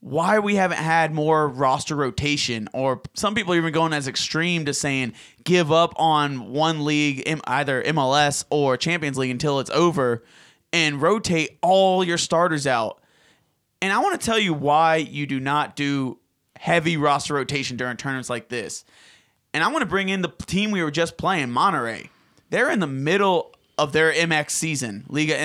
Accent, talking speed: American, 175 wpm